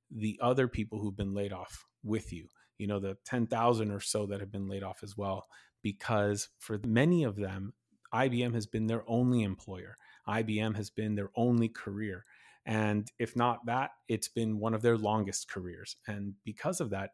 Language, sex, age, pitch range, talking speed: English, male, 30-49, 105-120 Hz, 190 wpm